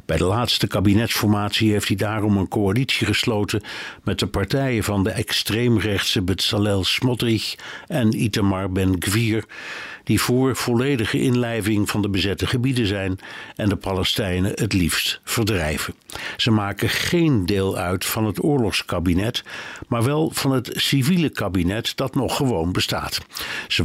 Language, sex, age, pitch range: Dutch, male, 60-79, 95-120 Hz